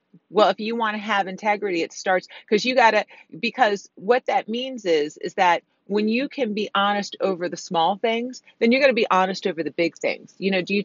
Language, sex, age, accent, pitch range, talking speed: English, female, 40-59, American, 175-225 Hz, 240 wpm